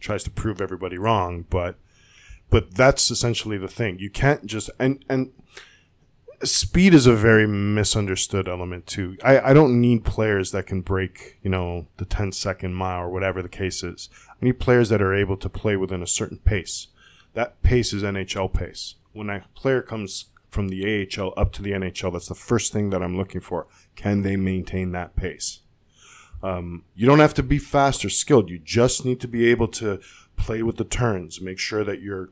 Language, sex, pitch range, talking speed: English, male, 90-110 Hz, 200 wpm